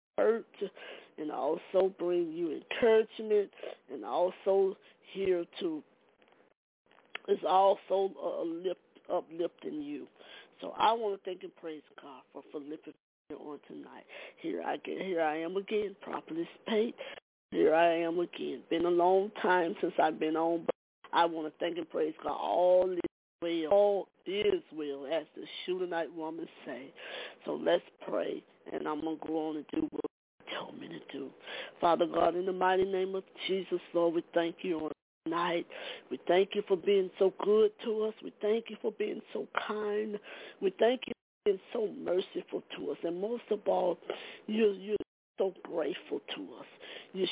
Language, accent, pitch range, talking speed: English, American, 175-240 Hz, 175 wpm